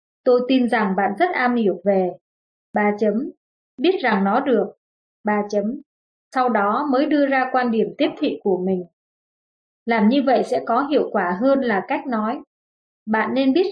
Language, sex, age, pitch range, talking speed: Vietnamese, female, 20-39, 210-270 Hz, 180 wpm